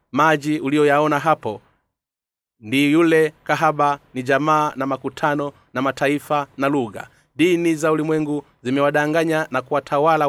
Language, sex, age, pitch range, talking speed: Swahili, male, 30-49, 130-155 Hz, 115 wpm